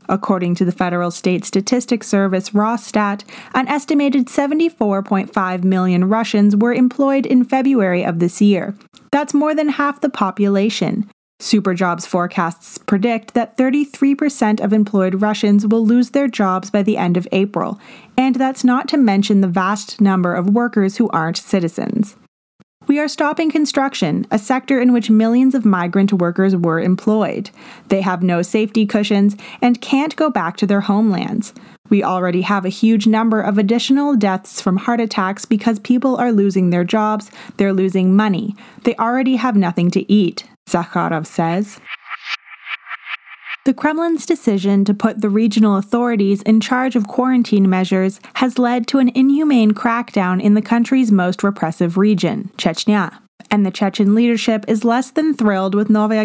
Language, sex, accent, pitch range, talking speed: English, female, American, 195-240 Hz, 155 wpm